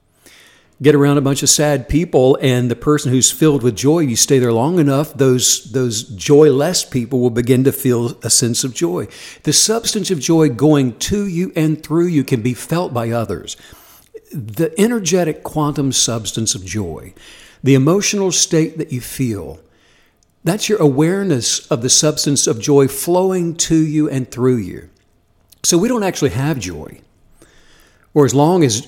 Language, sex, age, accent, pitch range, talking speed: English, male, 60-79, American, 125-165 Hz, 170 wpm